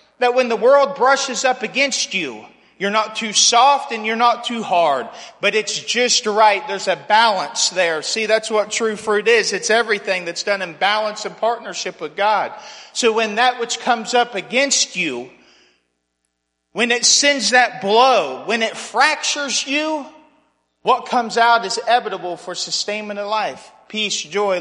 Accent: American